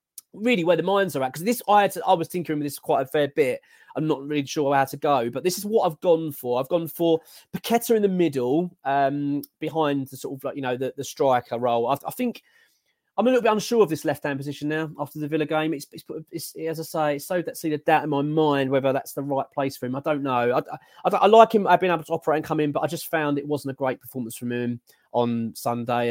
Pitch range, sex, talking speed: 135-175 Hz, male, 285 wpm